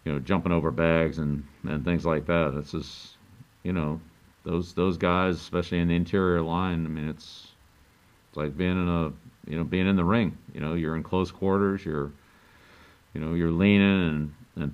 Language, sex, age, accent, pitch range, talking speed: English, male, 50-69, American, 75-90 Hz, 200 wpm